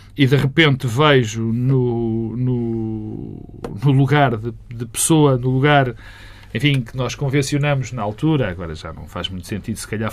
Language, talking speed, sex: Portuguese, 160 wpm, male